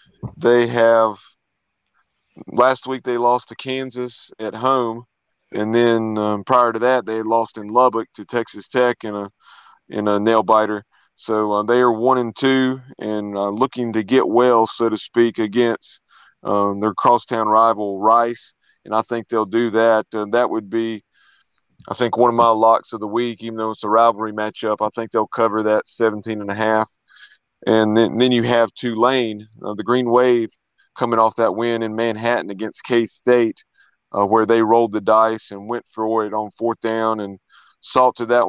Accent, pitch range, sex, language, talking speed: American, 110-120 Hz, male, English, 180 wpm